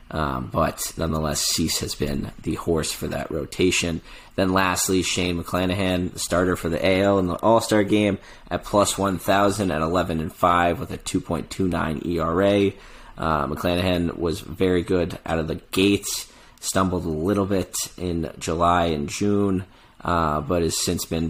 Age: 30-49